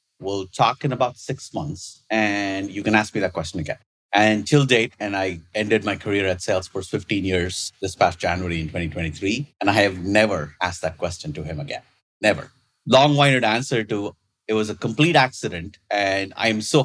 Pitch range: 95-120 Hz